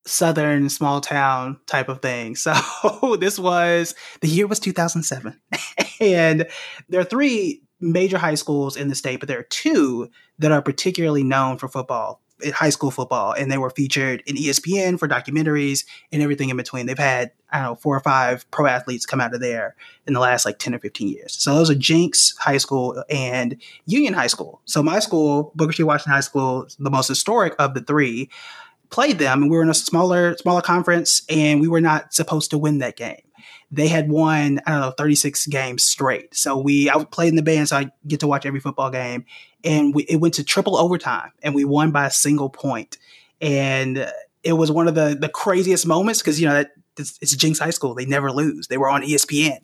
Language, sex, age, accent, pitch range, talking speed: English, male, 20-39, American, 140-165 Hz, 220 wpm